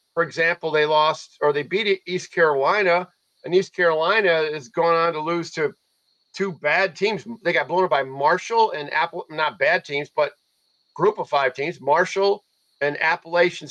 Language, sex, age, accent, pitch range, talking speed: English, male, 50-69, American, 145-185 Hz, 165 wpm